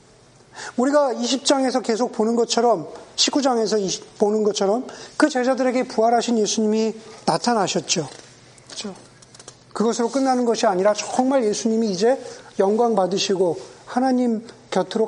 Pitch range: 180-245 Hz